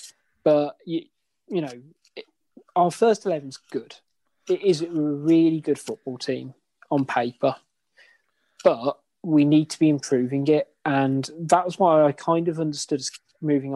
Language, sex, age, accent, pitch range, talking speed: English, male, 20-39, British, 140-165 Hz, 155 wpm